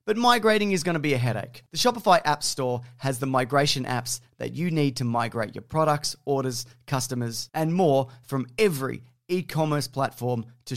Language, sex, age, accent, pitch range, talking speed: English, male, 30-49, Australian, 120-155 Hz, 180 wpm